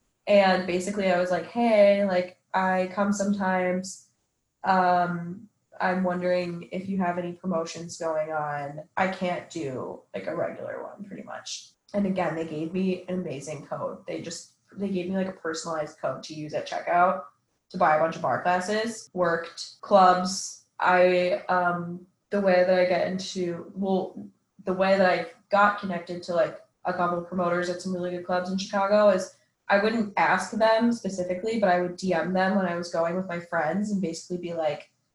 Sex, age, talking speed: female, 20-39, 185 wpm